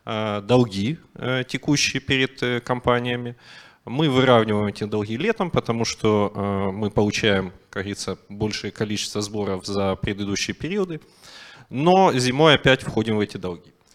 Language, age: Ukrainian, 30-49